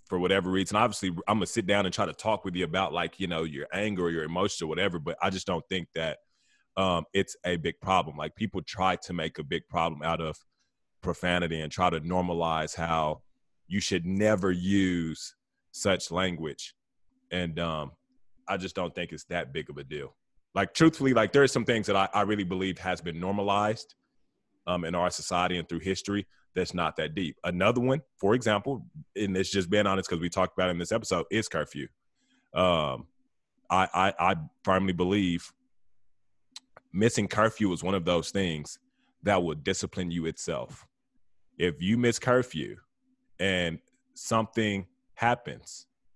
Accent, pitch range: American, 90-110 Hz